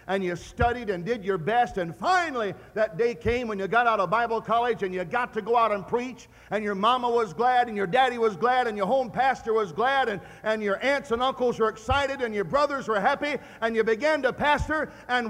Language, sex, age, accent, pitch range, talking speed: English, male, 50-69, American, 200-275 Hz, 245 wpm